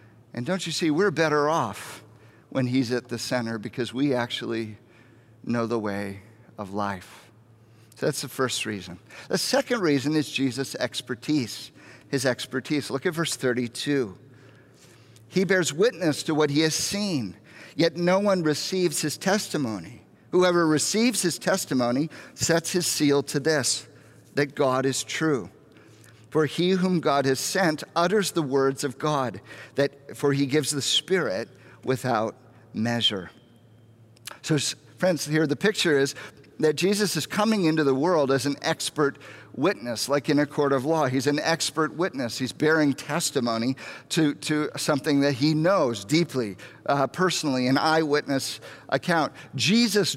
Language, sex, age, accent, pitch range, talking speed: English, male, 50-69, American, 120-160 Hz, 150 wpm